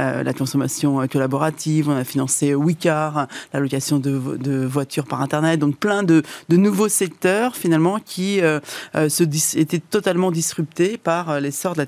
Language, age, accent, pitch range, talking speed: French, 30-49, French, 150-180 Hz, 165 wpm